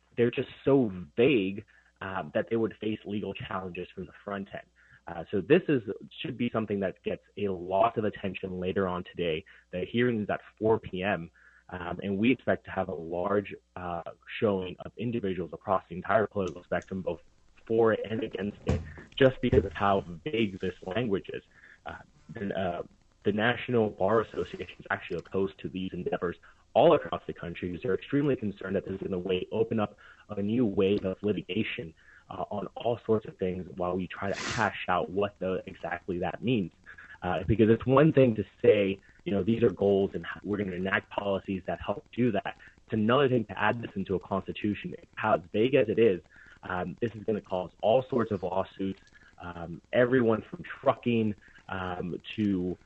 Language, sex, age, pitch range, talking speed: English, male, 30-49, 95-110 Hz, 190 wpm